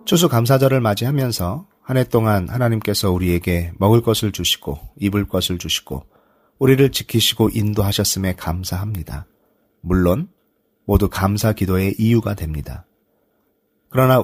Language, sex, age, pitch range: Korean, male, 40-59, 90-120 Hz